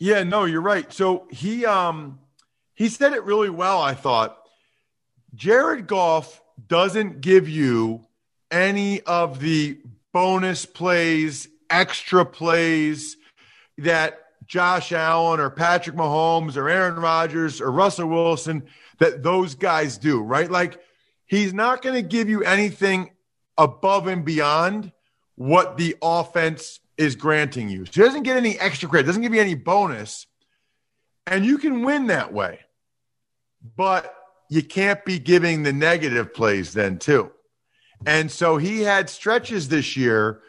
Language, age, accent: English, 40-59, American